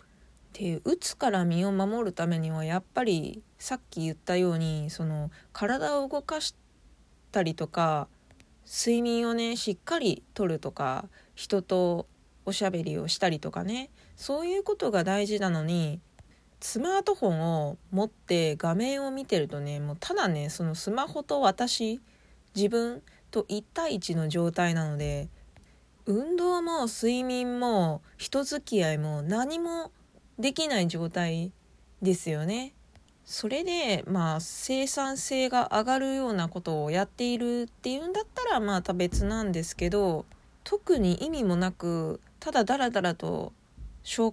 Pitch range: 170-260 Hz